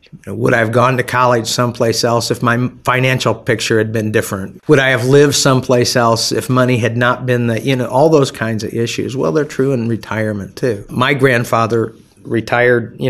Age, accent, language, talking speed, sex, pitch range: 50-69, American, English, 200 wpm, male, 110-130 Hz